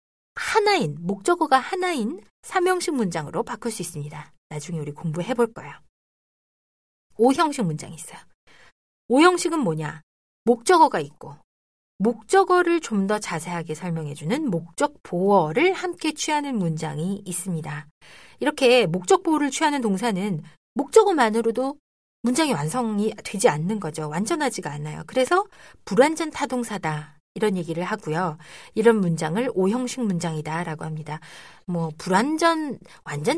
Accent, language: native, Korean